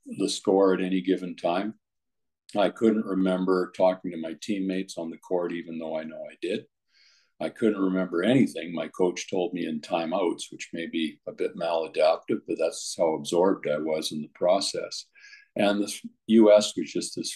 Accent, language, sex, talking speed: American, English, male, 185 wpm